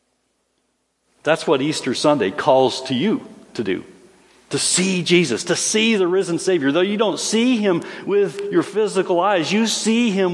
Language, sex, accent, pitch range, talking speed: English, male, American, 145-205 Hz, 170 wpm